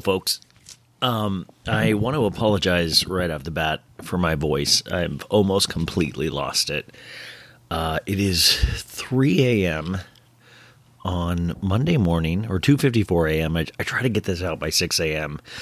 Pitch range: 80-120 Hz